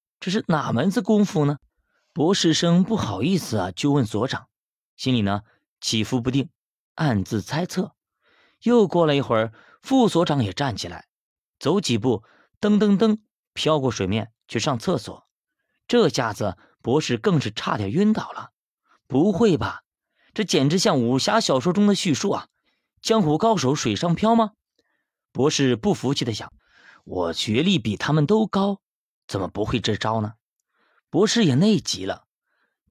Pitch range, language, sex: 115-195 Hz, Chinese, male